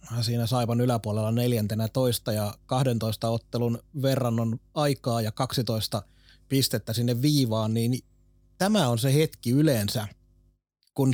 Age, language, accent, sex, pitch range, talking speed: 30-49, Finnish, native, male, 115-135 Hz, 120 wpm